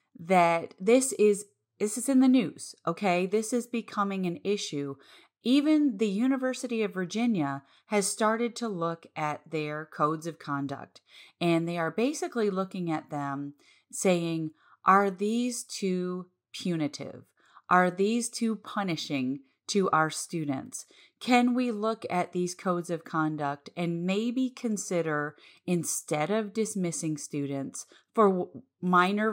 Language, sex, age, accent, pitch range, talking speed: English, female, 30-49, American, 155-215 Hz, 130 wpm